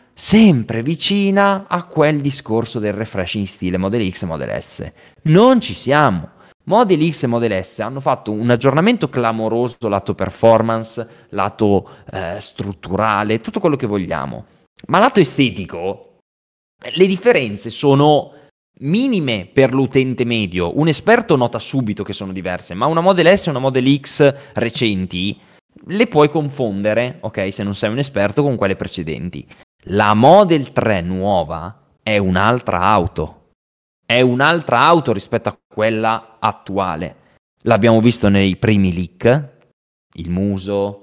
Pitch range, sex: 100-140 Hz, male